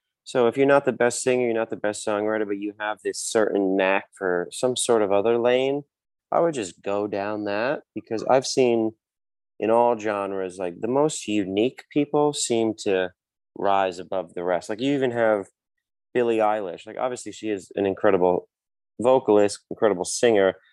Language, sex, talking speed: English, male, 180 wpm